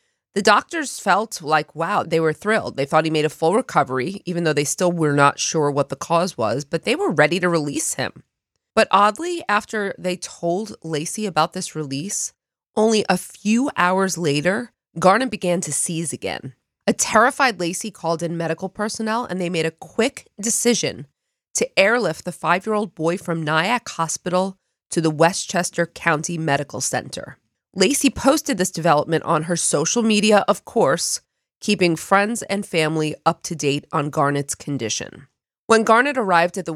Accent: American